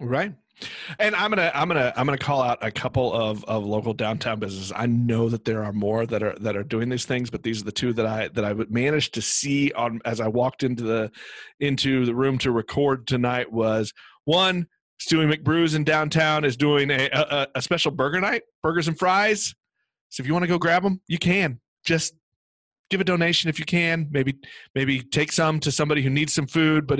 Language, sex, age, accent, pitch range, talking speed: English, male, 40-59, American, 120-155 Hz, 220 wpm